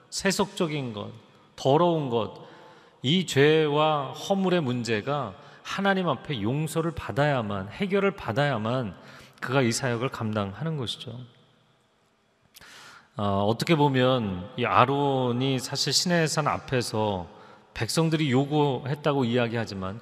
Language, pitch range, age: Korean, 120-160 Hz, 40-59